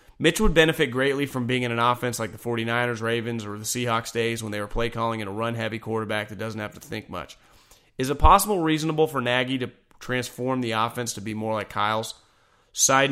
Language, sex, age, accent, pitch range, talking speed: English, male, 30-49, American, 110-140 Hz, 220 wpm